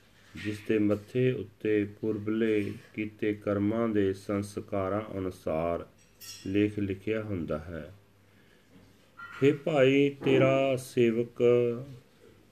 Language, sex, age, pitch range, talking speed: Punjabi, male, 40-59, 95-105 Hz, 85 wpm